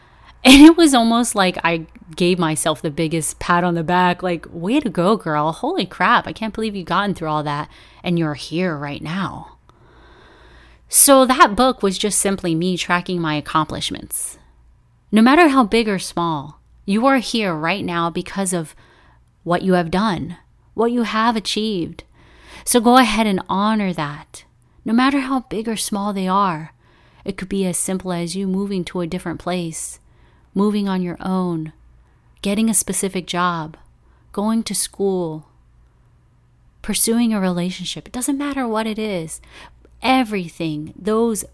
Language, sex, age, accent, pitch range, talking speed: English, female, 30-49, American, 165-215 Hz, 165 wpm